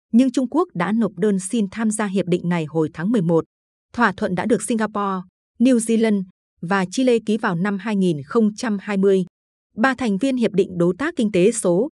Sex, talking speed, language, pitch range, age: female, 190 wpm, Vietnamese, 180-225 Hz, 20-39